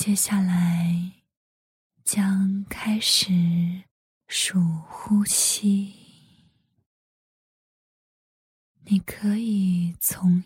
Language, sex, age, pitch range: Chinese, female, 20-39, 180-205 Hz